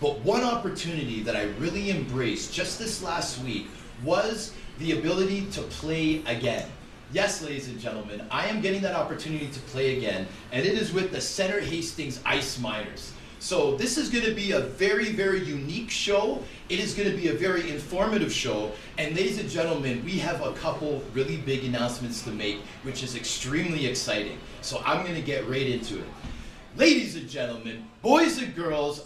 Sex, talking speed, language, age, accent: male, 180 wpm, English, 30-49, American